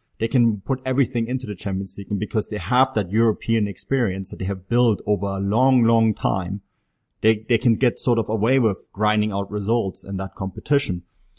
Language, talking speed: English, 195 wpm